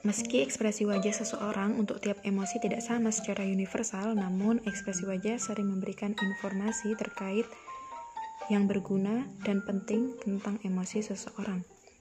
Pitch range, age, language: 195-215 Hz, 20-39, Indonesian